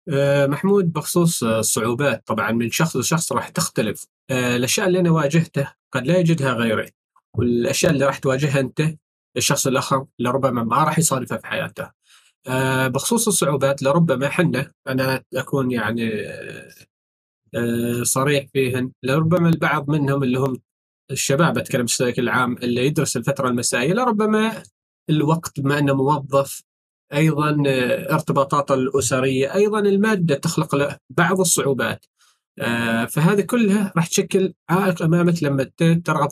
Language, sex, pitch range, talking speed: Arabic, male, 130-175 Hz, 130 wpm